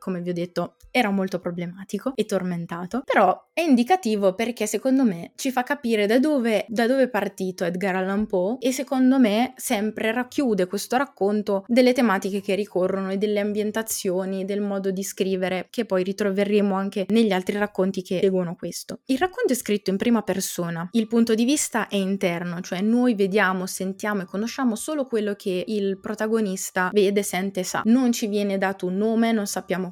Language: Italian